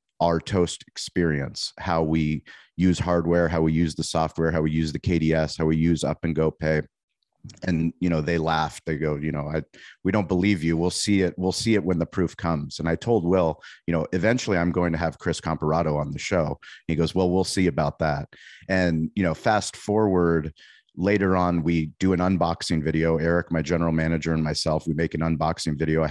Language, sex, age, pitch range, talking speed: English, male, 30-49, 80-90 Hz, 220 wpm